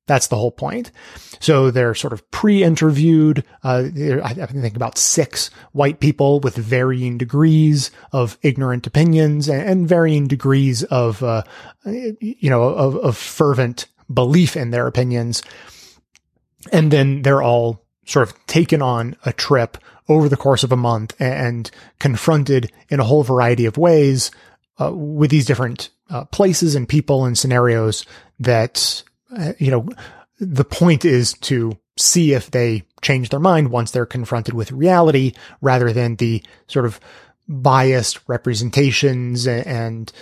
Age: 30-49